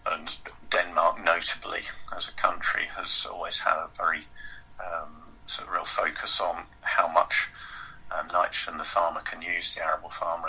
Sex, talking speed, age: male, 160 wpm, 50-69